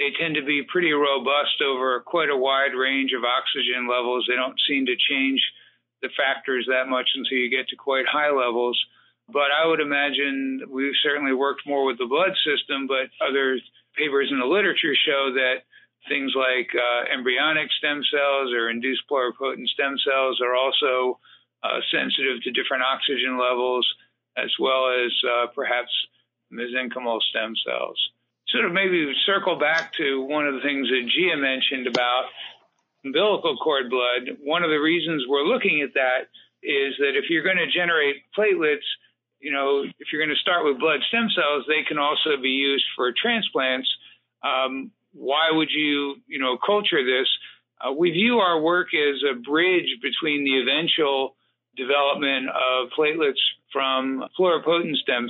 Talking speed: 165 wpm